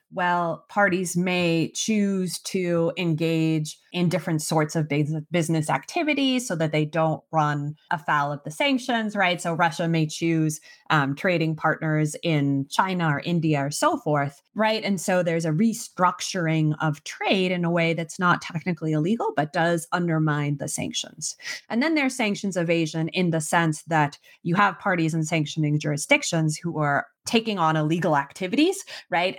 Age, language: 30-49, English